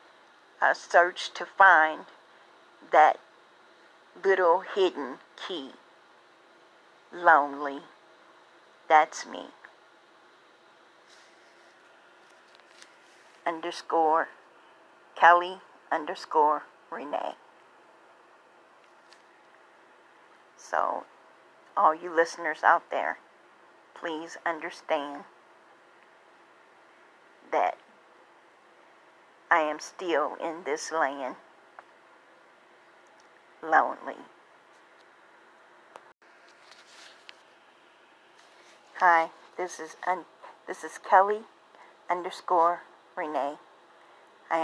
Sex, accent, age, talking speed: female, American, 40-59, 50 wpm